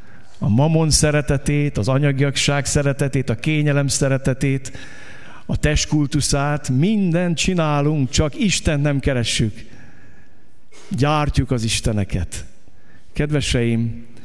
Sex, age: male, 50-69